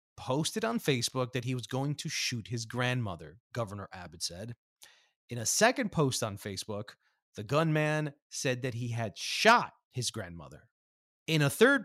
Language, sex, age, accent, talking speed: English, male, 30-49, American, 160 wpm